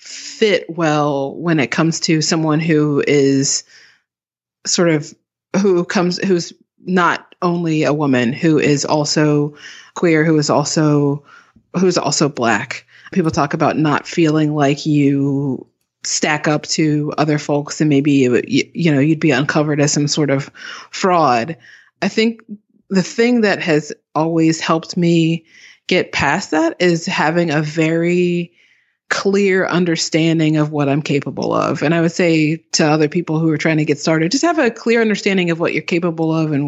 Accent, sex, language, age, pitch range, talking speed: American, female, English, 30-49, 150-175 Hz, 165 wpm